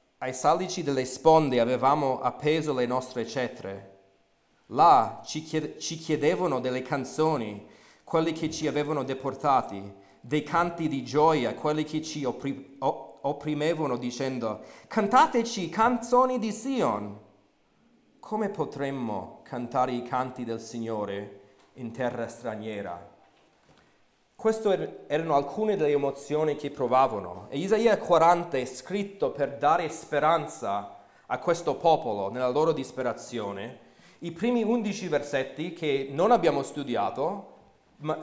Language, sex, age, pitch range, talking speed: Italian, male, 40-59, 125-180 Hz, 115 wpm